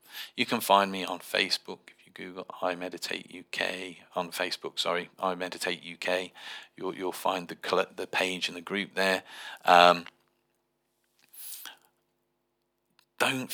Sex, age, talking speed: male, 40-59, 135 wpm